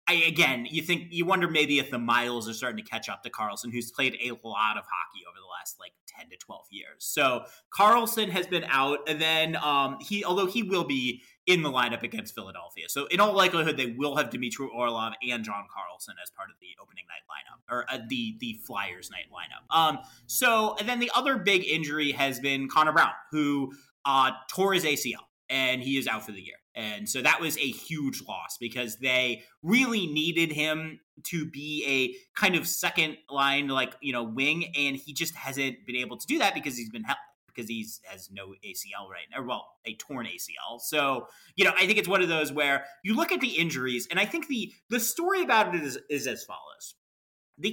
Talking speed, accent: 215 wpm, American